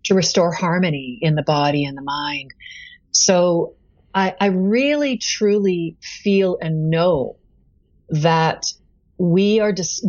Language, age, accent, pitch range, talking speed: English, 40-59, American, 145-195 Hz, 125 wpm